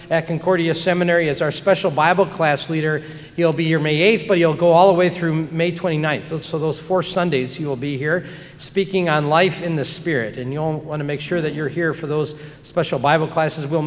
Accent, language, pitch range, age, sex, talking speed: American, English, 150-180 Hz, 50-69, male, 225 wpm